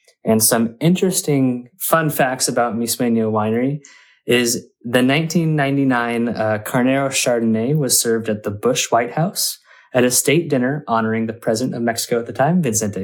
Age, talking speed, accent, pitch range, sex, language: 20-39, 155 wpm, American, 110-140 Hz, male, English